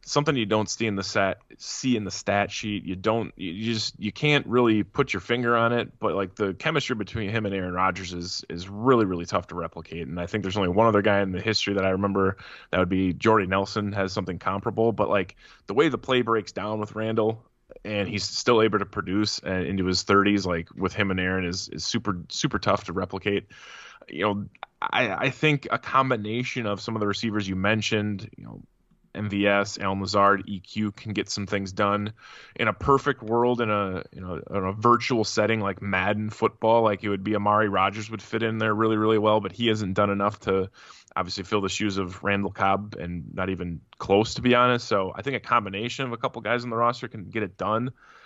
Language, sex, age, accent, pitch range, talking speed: English, male, 20-39, American, 100-115 Hz, 225 wpm